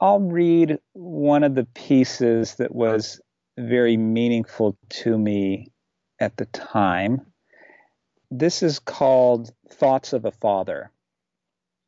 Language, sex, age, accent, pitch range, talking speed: English, male, 50-69, American, 105-135 Hz, 110 wpm